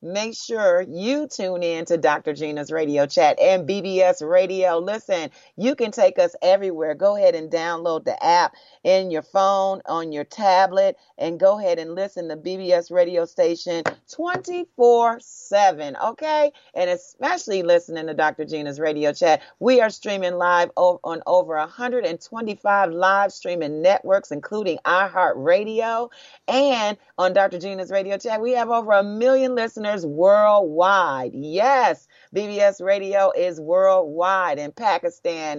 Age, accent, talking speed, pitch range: 40-59, American, 140 wpm, 175-245 Hz